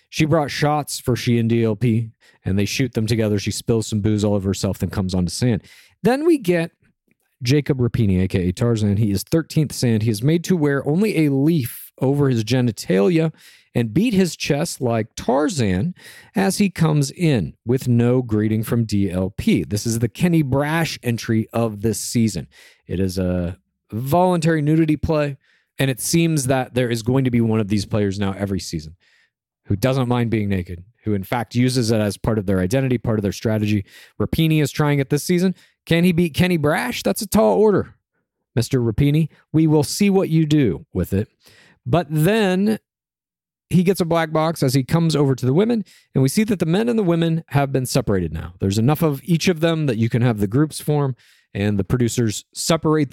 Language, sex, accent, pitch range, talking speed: English, male, American, 110-160 Hz, 200 wpm